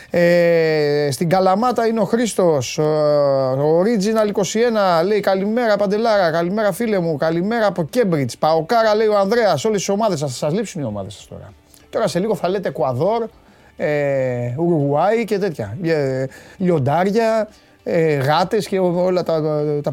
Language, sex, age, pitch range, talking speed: Greek, male, 30-49, 155-215 Hz, 150 wpm